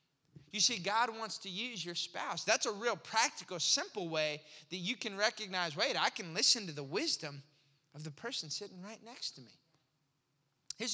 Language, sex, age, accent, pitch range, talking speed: English, male, 20-39, American, 160-265 Hz, 185 wpm